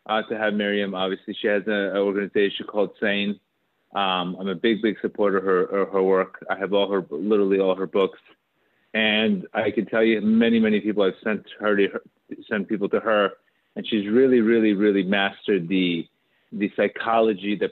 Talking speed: 195 wpm